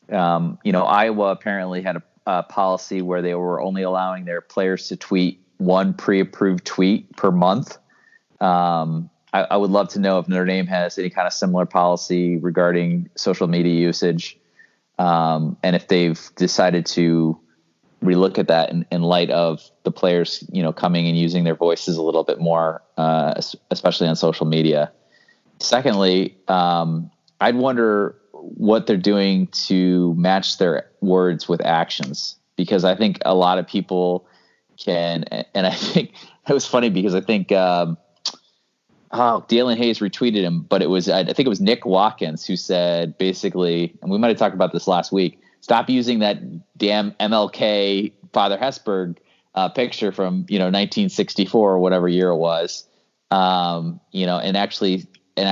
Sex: male